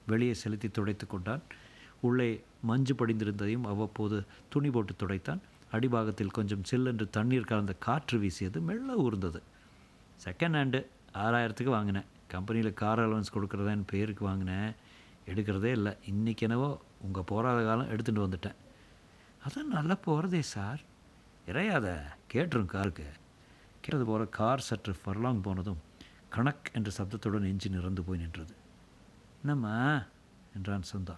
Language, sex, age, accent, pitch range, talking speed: Tamil, male, 50-69, native, 95-120 Hz, 115 wpm